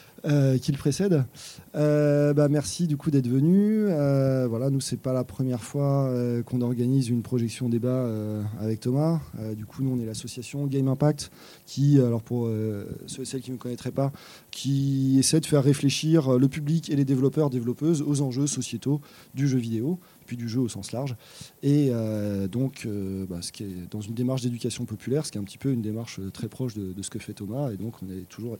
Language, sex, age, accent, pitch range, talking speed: French, male, 20-39, French, 115-140 Hz, 220 wpm